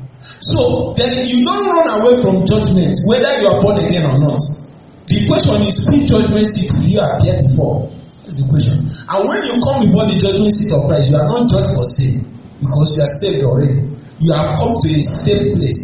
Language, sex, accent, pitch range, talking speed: English, male, Nigerian, 135-190 Hz, 210 wpm